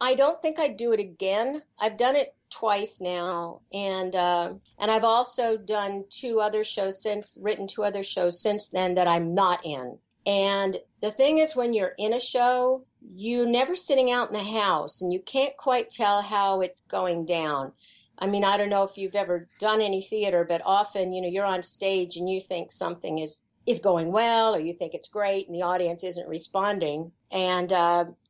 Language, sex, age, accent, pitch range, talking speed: English, female, 50-69, American, 180-225 Hz, 200 wpm